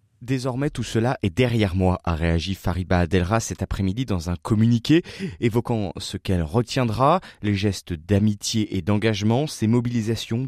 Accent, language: French, French